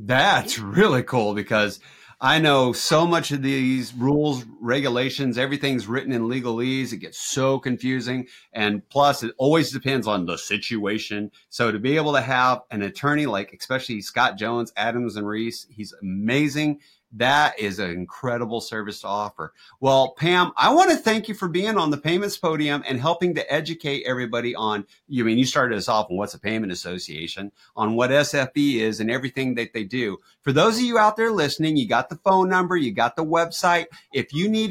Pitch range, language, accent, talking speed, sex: 115-155 Hz, English, American, 190 wpm, male